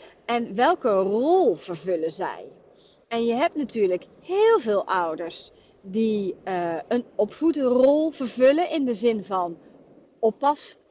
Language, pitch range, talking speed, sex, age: Dutch, 210-315 Hz, 120 wpm, female, 30-49